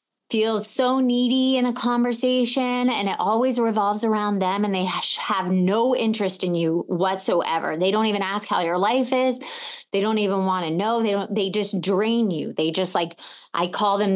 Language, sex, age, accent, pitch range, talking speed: English, female, 20-39, American, 180-235 Hz, 195 wpm